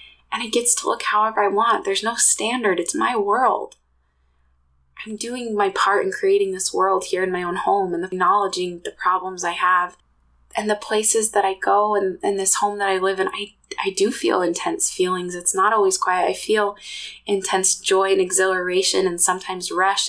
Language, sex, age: English, female, 20-39